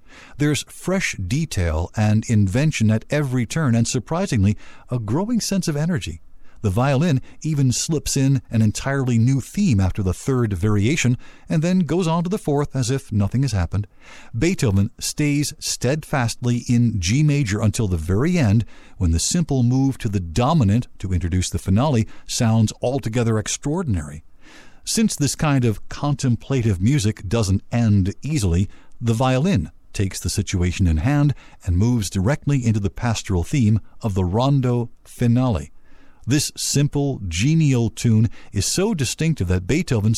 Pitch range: 105-145 Hz